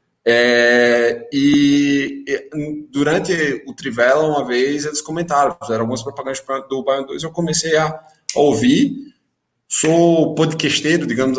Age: 20-39